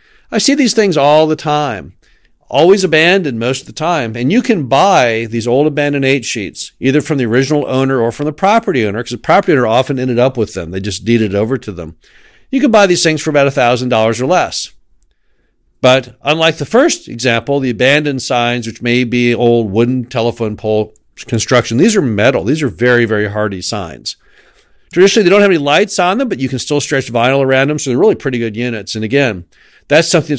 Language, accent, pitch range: English, American, 120-170 Hz